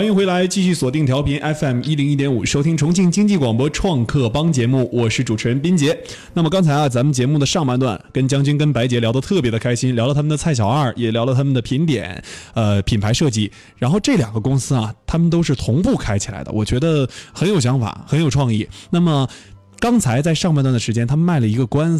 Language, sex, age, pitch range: Chinese, male, 20-39, 120-160 Hz